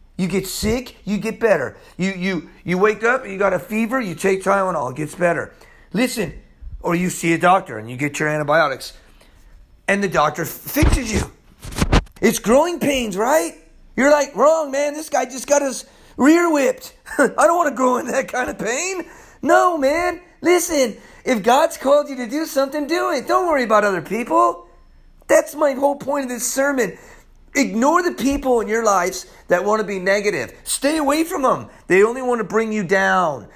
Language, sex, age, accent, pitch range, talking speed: English, male, 40-59, American, 195-290 Hz, 195 wpm